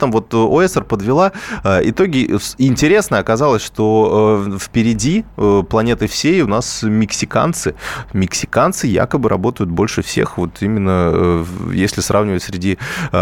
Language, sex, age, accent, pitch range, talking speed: Russian, male, 20-39, native, 95-115 Hz, 110 wpm